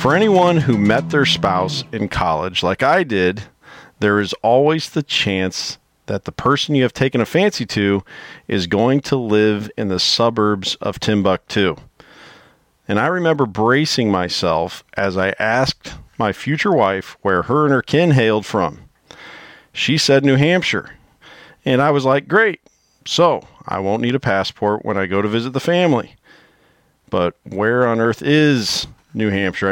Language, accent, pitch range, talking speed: English, American, 100-135 Hz, 165 wpm